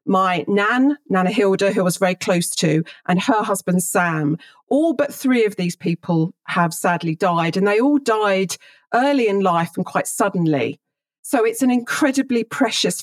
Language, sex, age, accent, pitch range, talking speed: English, female, 40-59, British, 160-230 Hz, 170 wpm